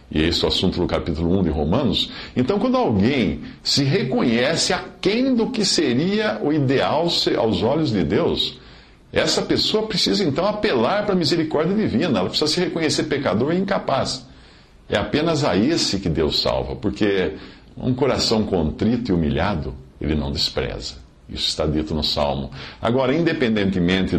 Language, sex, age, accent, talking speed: Portuguese, male, 50-69, Brazilian, 160 wpm